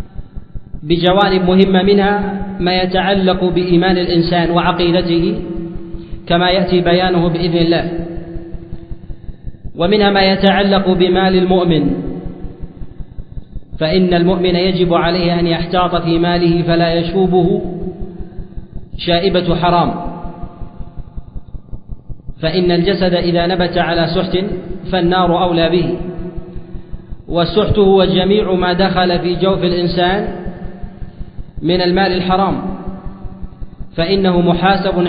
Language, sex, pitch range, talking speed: Arabic, male, 175-185 Hz, 90 wpm